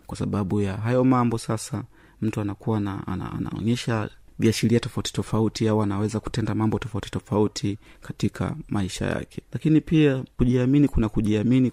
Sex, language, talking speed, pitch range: male, Swahili, 145 wpm, 105-125 Hz